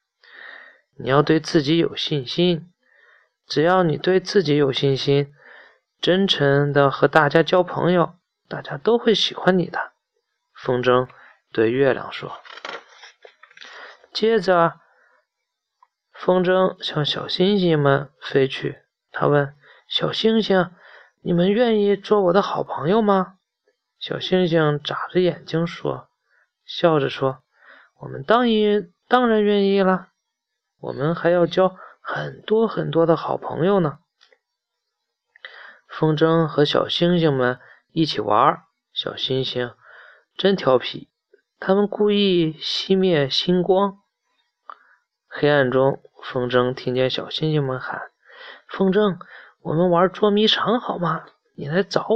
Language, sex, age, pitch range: Chinese, male, 20-39, 140-195 Hz